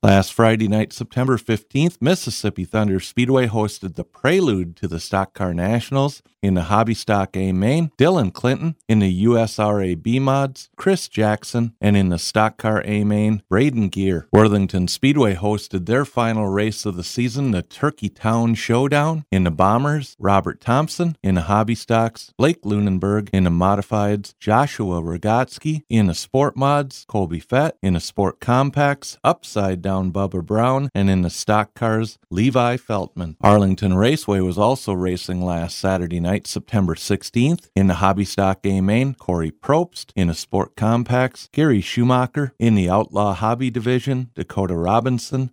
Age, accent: 40-59, American